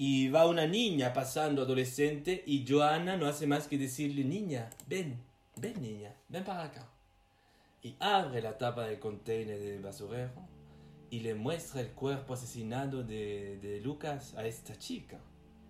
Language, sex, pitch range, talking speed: Spanish, male, 110-145 Hz, 155 wpm